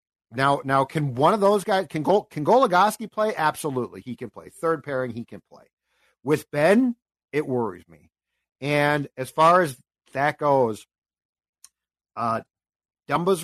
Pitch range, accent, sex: 120-160 Hz, American, male